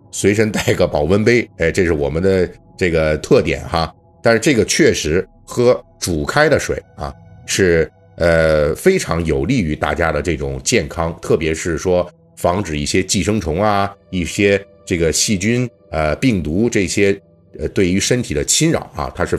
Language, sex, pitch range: Chinese, male, 85-115 Hz